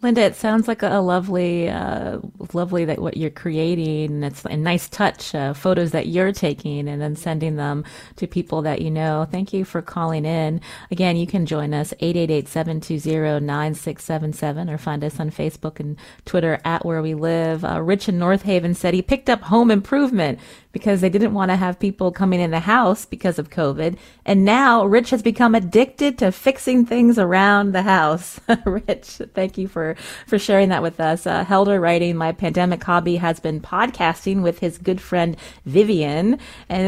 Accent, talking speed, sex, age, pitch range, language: American, 185 wpm, female, 30-49, 160-200 Hz, English